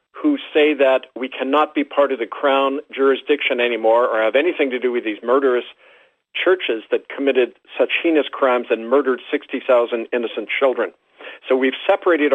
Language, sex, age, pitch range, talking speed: English, male, 50-69, 130-195 Hz, 165 wpm